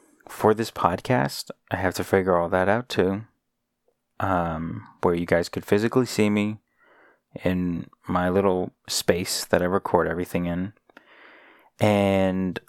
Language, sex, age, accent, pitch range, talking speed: English, male, 30-49, American, 90-105 Hz, 135 wpm